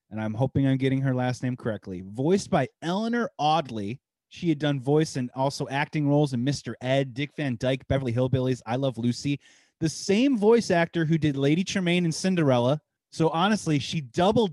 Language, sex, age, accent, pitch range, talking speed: English, male, 30-49, American, 135-170 Hz, 190 wpm